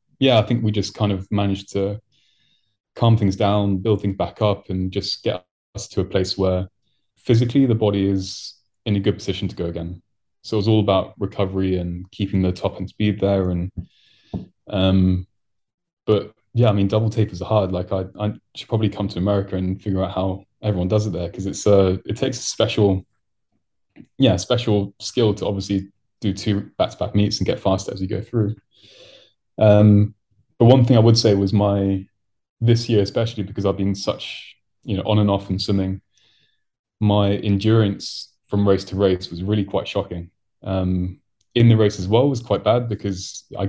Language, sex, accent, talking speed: English, male, British, 195 wpm